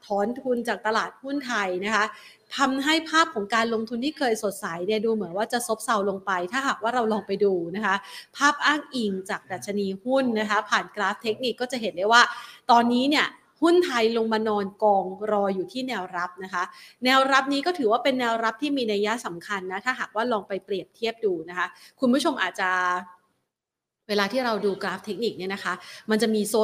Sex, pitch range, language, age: female, 200-245 Hz, Thai, 30-49